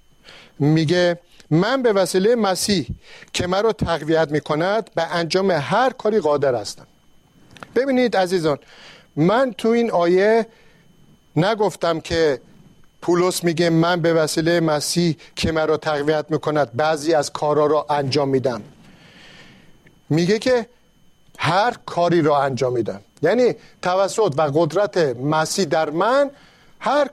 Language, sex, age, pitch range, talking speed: Persian, male, 50-69, 155-210 Hz, 120 wpm